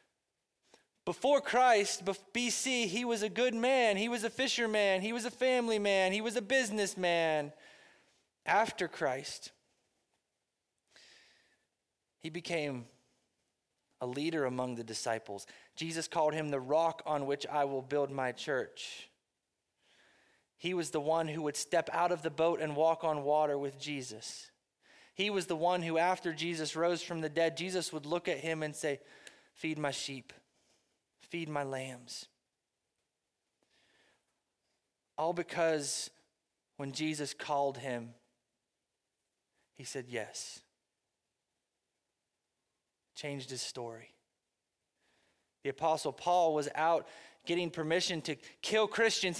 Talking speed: 130 wpm